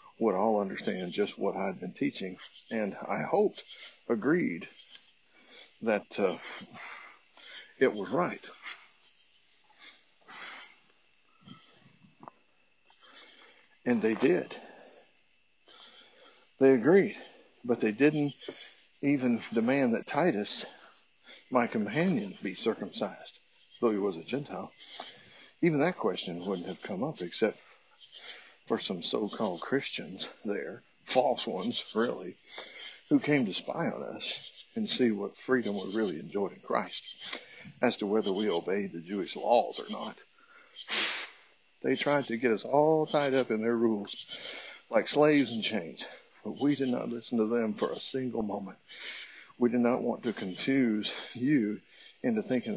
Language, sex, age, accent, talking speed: English, male, 60-79, American, 130 wpm